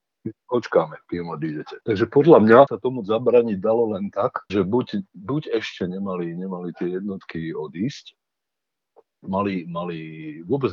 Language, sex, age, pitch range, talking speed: Slovak, male, 50-69, 90-130 Hz, 135 wpm